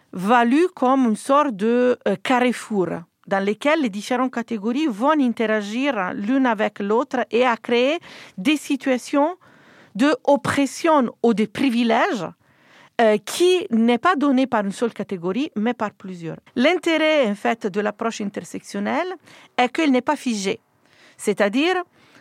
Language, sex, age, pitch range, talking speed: French, female, 40-59, 195-260 Hz, 135 wpm